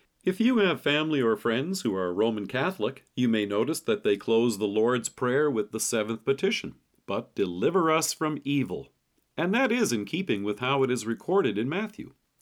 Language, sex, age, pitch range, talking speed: English, male, 50-69, 115-150 Hz, 195 wpm